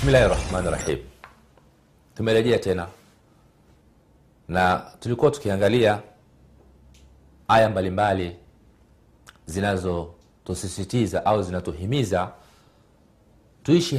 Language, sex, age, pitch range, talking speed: Swahili, male, 40-59, 90-120 Hz, 55 wpm